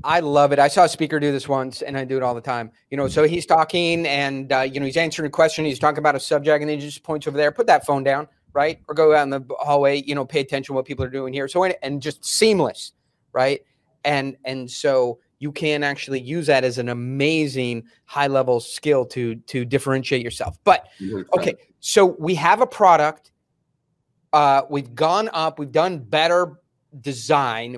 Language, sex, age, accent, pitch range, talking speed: English, male, 30-49, American, 135-155 Hz, 215 wpm